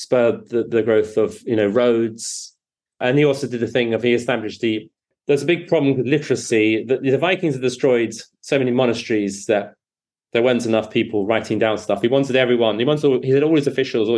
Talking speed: 215 wpm